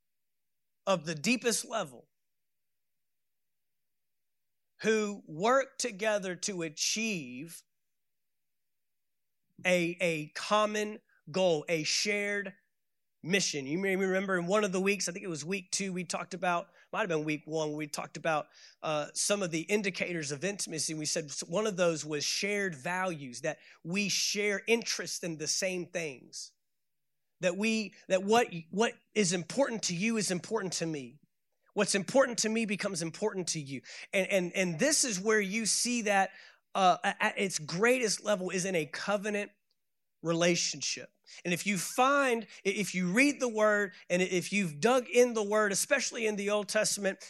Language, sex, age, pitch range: English, male, 30-49, 170-210 Hz